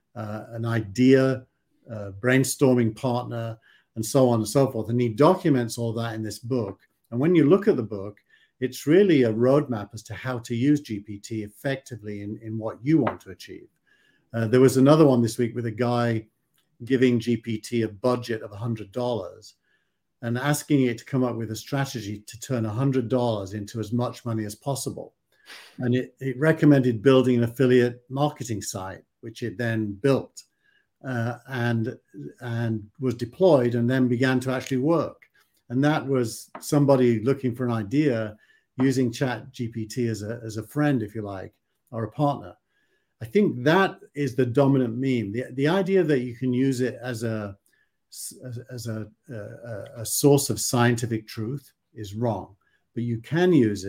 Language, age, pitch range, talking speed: English, 50-69, 110-130 Hz, 175 wpm